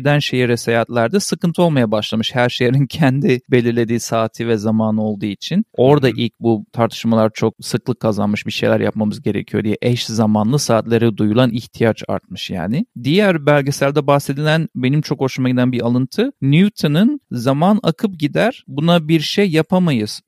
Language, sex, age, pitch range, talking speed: Turkish, male, 40-59, 120-160 Hz, 150 wpm